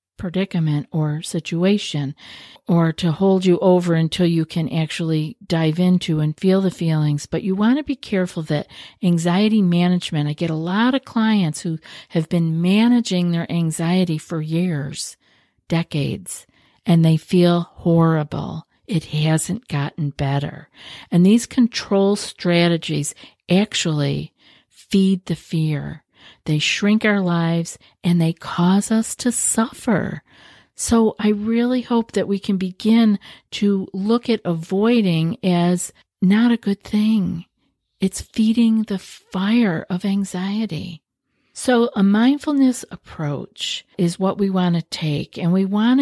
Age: 50-69